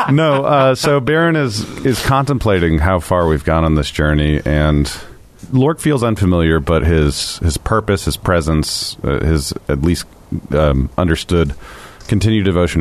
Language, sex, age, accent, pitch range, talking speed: English, male, 40-59, American, 75-95 Hz, 150 wpm